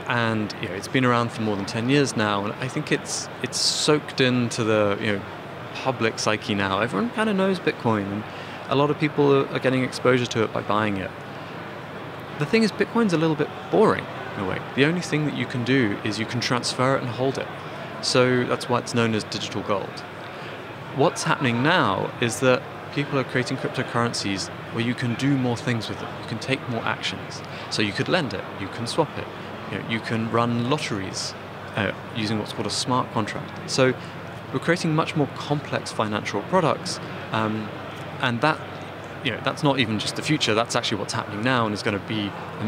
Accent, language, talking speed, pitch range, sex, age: British, Dutch, 210 wpm, 110-145 Hz, male, 20-39